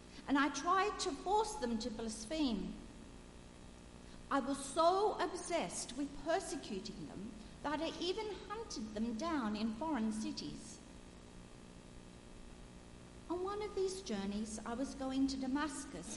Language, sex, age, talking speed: English, female, 50-69, 125 wpm